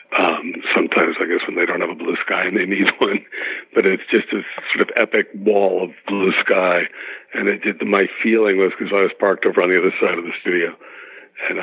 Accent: American